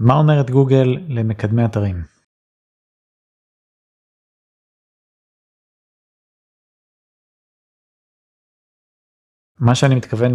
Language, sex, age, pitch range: Hebrew, male, 30-49, 110-140 Hz